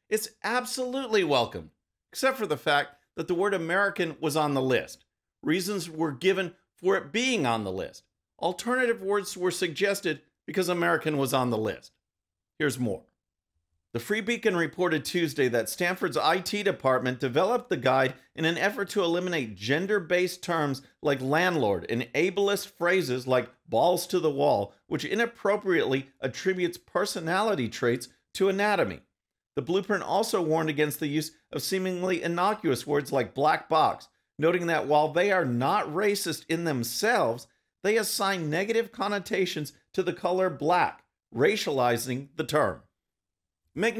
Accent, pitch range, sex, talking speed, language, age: American, 140-195 Hz, male, 145 wpm, English, 50-69